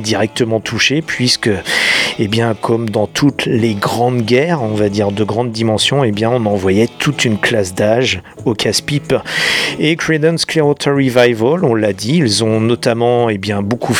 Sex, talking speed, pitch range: male, 165 wpm, 110-130 Hz